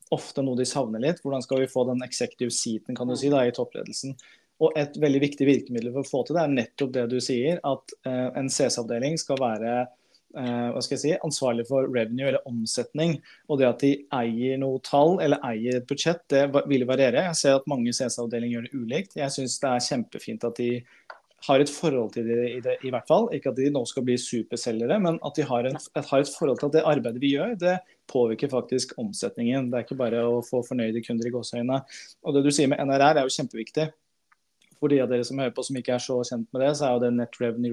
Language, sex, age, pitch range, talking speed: English, male, 20-39, 125-140 Hz, 225 wpm